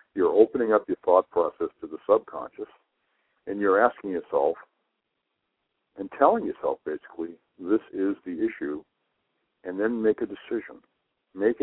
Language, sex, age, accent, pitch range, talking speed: English, male, 60-79, American, 330-440 Hz, 140 wpm